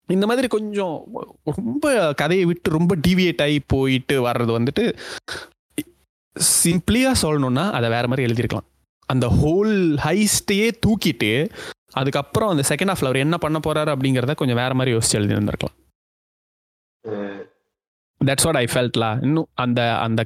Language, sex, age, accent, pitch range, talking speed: Tamil, male, 20-39, native, 120-195 Hz, 120 wpm